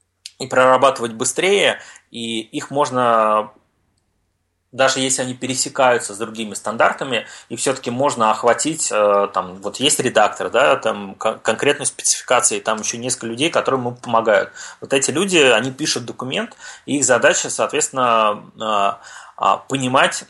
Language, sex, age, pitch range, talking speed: Russian, male, 20-39, 110-130 Hz, 125 wpm